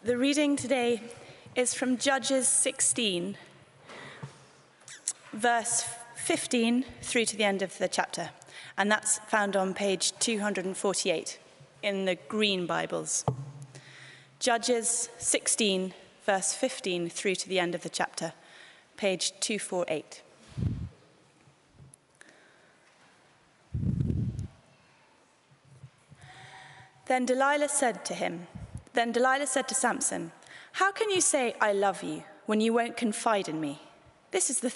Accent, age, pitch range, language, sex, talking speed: British, 30-49, 185-250 Hz, English, female, 110 wpm